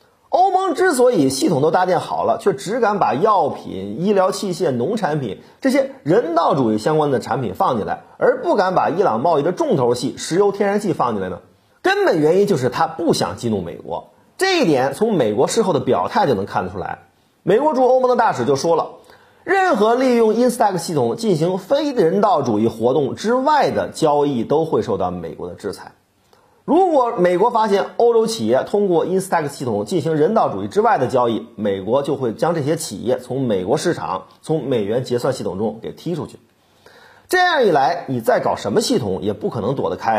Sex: male